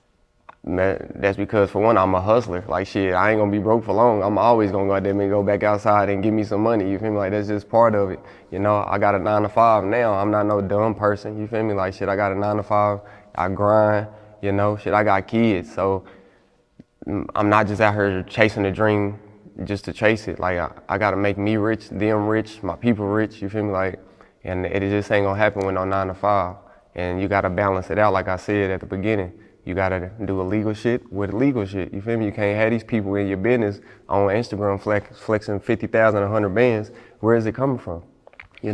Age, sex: 20-39, male